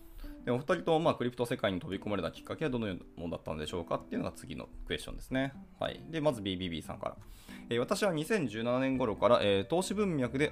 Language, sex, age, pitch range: Japanese, male, 20-39, 95-140 Hz